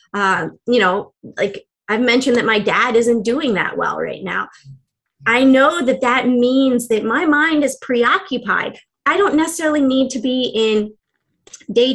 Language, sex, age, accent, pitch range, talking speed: English, female, 30-49, American, 230-280 Hz, 165 wpm